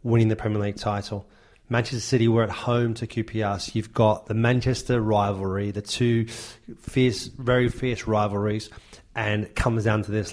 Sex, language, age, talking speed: male, English, 30-49, 175 wpm